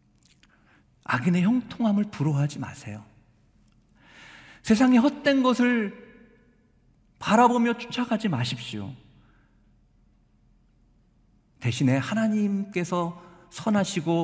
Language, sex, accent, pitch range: Korean, male, native, 125-200 Hz